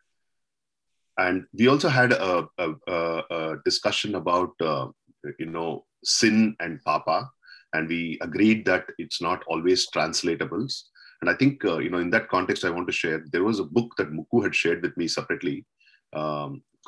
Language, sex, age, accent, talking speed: English, male, 40-59, Indian, 170 wpm